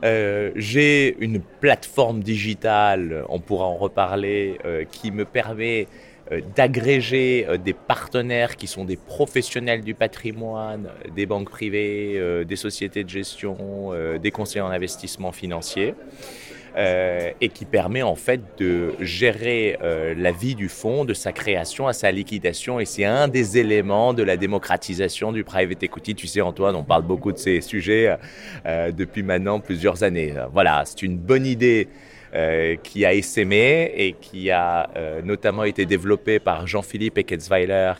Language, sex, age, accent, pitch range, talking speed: French, male, 30-49, French, 95-120 Hz, 160 wpm